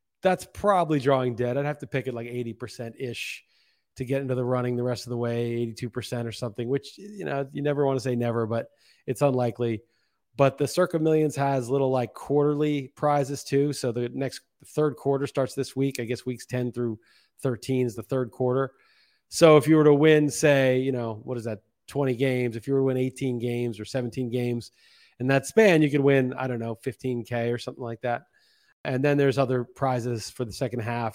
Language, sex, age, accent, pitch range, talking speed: English, male, 30-49, American, 120-145 Hz, 215 wpm